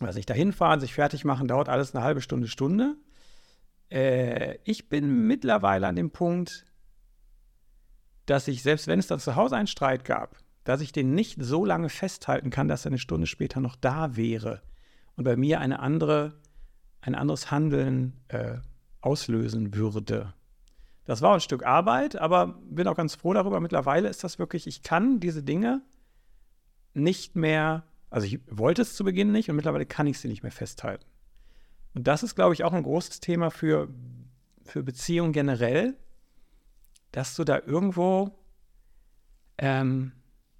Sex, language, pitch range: male, German, 125-175 Hz